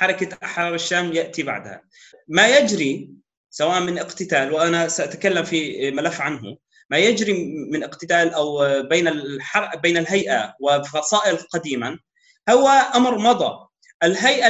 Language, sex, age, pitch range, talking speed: Arabic, male, 30-49, 150-200 Hz, 120 wpm